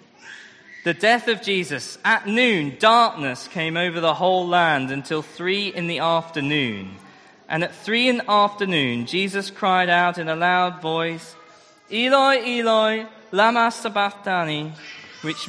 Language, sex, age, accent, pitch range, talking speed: English, male, 20-39, British, 160-220 Hz, 135 wpm